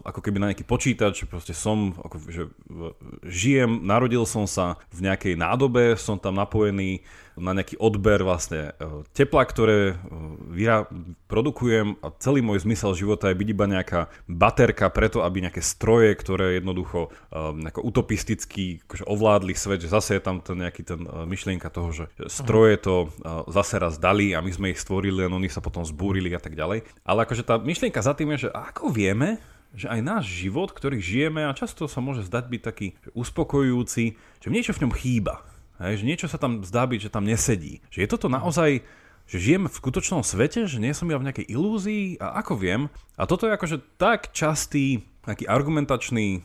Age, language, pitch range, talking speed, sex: 30-49, Slovak, 90-120 Hz, 185 wpm, male